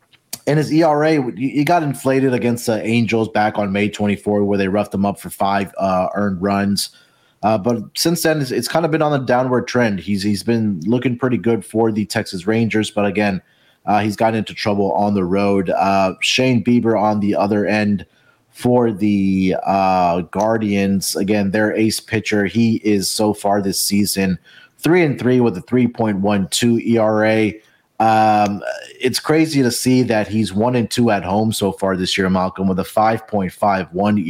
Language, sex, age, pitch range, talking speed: English, male, 30-49, 100-115 Hz, 185 wpm